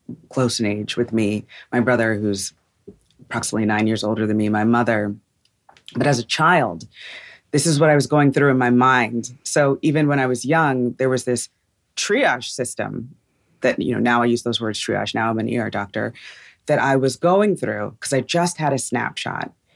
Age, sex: 30-49, female